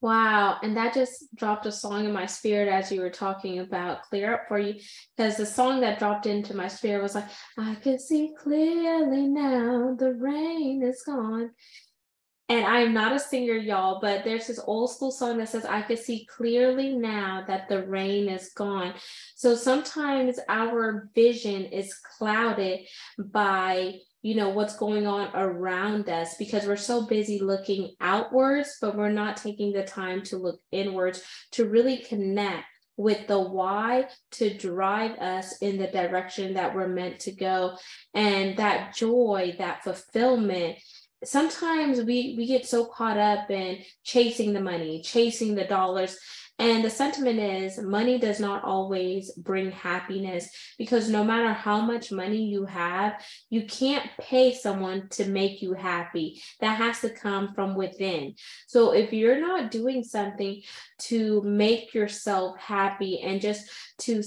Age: 10-29